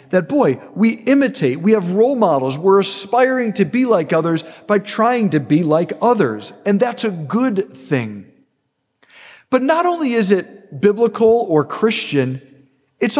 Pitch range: 165-250 Hz